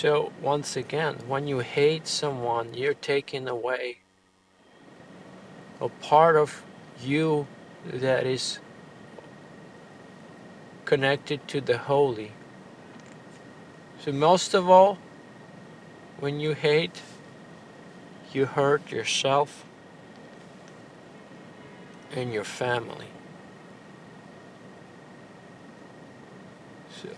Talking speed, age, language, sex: 75 wpm, 50-69, English, male